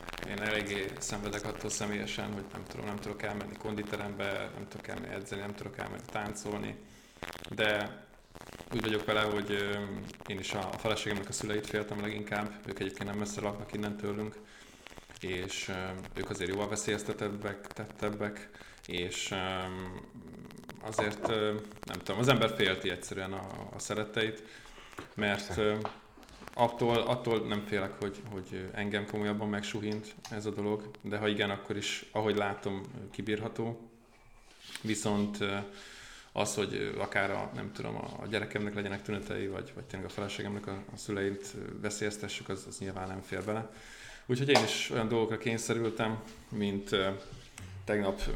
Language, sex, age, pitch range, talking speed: Hungarian, male, 20-39, 100-110 Hz, 135 wpm